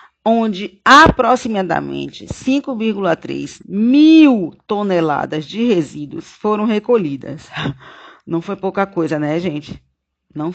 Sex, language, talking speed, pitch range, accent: female, Portuguese, 90 wpm, 160-225 Hz, Brazilian